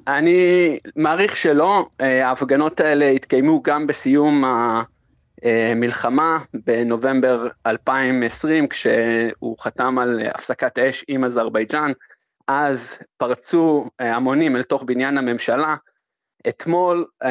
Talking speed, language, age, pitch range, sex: 90 wpm, Hebrew, 20-39, 125-155 Hz, male